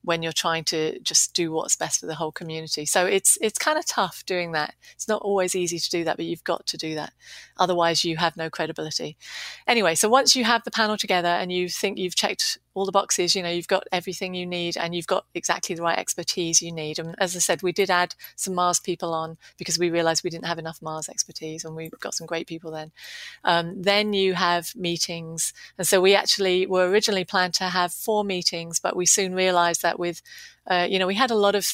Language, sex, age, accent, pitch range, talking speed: English, female, 30-49, British, 165-190 Hz, 240 wpm